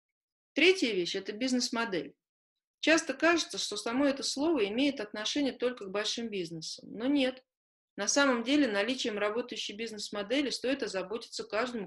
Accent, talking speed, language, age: native, 135 wpm, Russian, 30-49